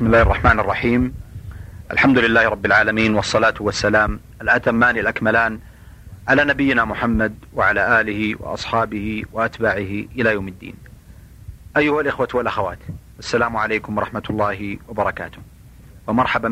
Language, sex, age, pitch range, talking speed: Arabic, male, 40-59, 105-120 Hz, 115 wpm